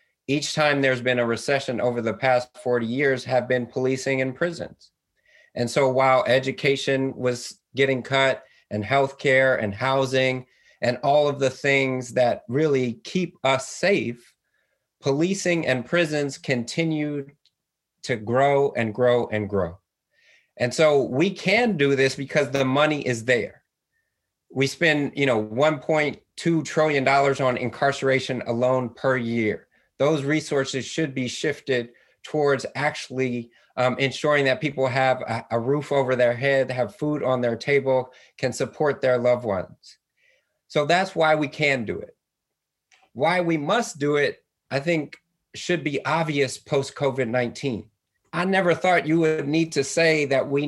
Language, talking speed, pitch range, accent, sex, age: English, 145 wpm, 125-150 Hz, American, male, 30-49